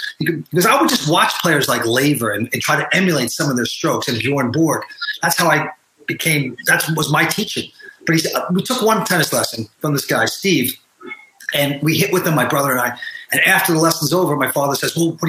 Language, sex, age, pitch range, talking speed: English, male, 30-49, 140-195 Hz, 230 wpm